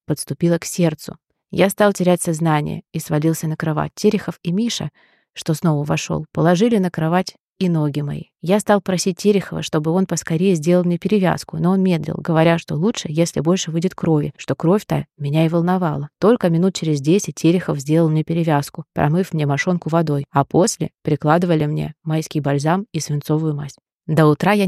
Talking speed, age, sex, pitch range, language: 175 wpm, 20-39, female, 150-180 Hz, Russian